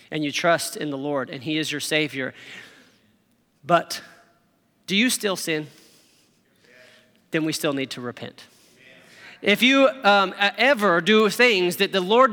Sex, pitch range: male, 160-230 Hz